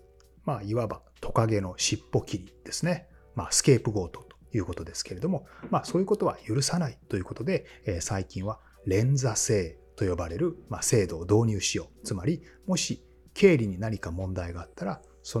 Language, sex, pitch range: Japanese, male, 95-150 Hz